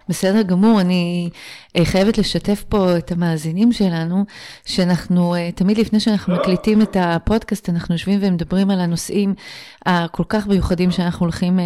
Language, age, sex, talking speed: Hebrew, 30-49, female, 135 wpm